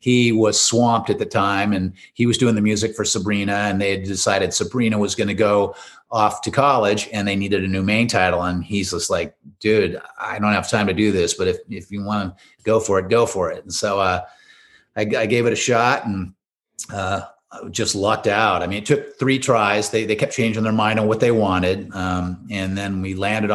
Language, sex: English, male